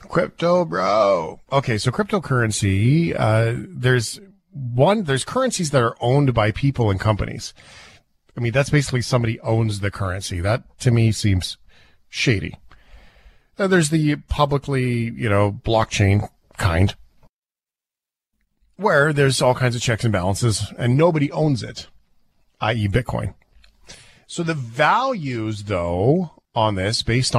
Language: English